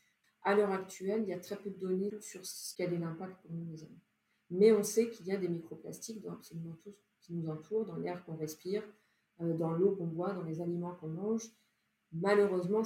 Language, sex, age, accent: French, female, 30-49, French